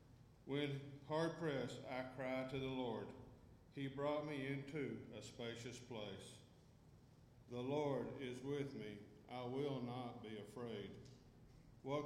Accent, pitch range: American, 120-140 Hz